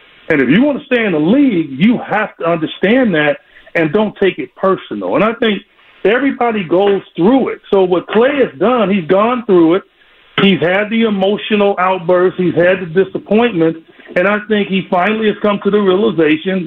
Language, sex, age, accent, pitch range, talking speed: English, male, 50-69, American, 170-225 Hz, 195 wpm